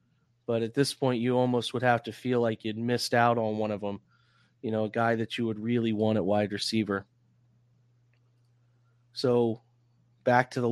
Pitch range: 115-135 Hz